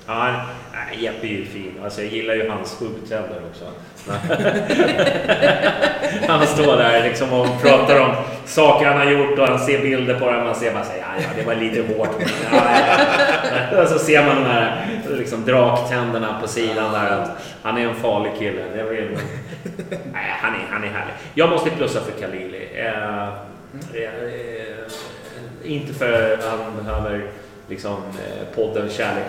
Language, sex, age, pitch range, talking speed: English, male, 30-49, 105-115 Hz, 170 wpm